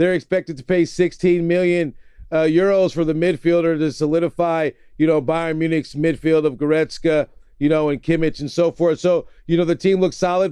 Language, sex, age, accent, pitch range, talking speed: English, male, 40-59, American, 175-200 Hz, 195 wpm